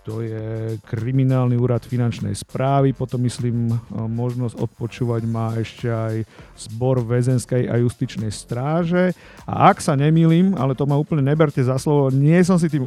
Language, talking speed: Slovak, 155 wpm